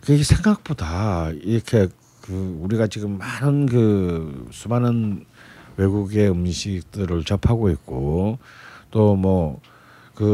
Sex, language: male, Korean